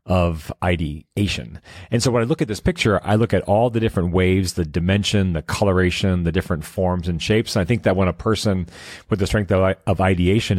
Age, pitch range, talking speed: 40-59, 90-110 Hz, 215 wpm